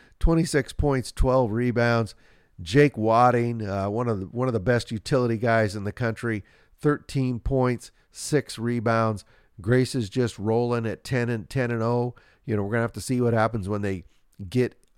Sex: male